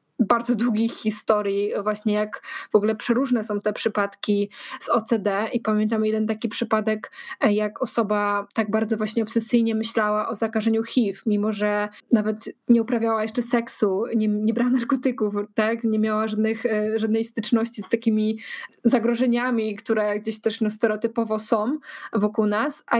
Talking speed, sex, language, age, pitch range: 150 wpm, female, Polish, 20-39, 215-235 Hz